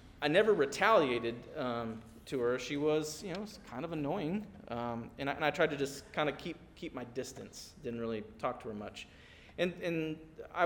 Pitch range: 110-150 Hz